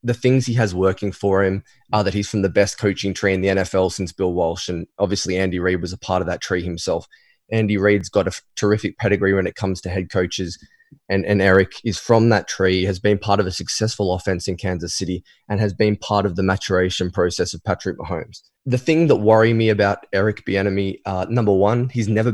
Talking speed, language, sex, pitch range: 230 wpm, English, male, 95-110 Hz